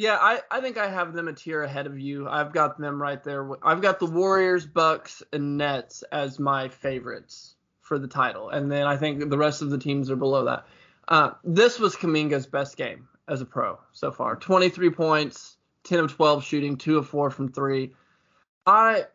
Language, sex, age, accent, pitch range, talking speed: English, male, 20-39, American, 140-170 Hz, 205 wpm